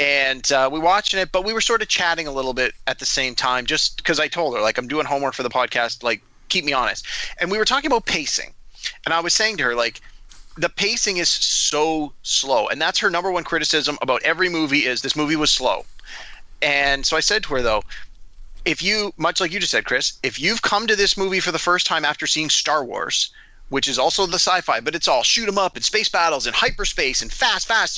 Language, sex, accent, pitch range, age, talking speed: English, male, American, 140-180 Hz, 30-49, 250 wpm